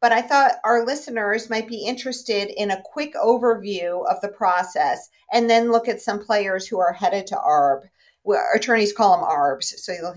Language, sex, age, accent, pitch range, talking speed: English, female, 50-69, American, 185-235 Hz, 190 wpm